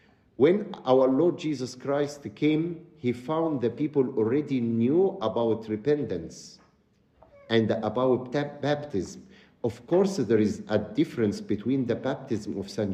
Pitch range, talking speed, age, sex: 110-150 Hz, 130 wpm, 50-69, male